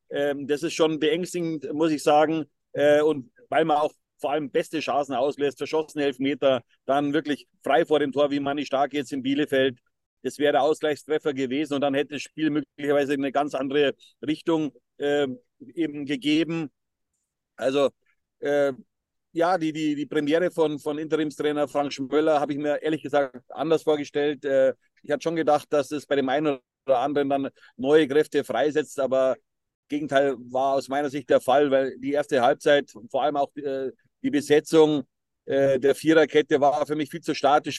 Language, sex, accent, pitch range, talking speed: German, male, German, 140-155 Hz, 170 wpm